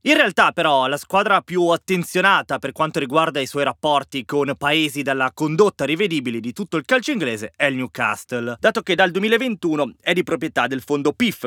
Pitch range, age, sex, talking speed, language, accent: 125-185 Hz, 20-39, male, 190 wpm, Italian, native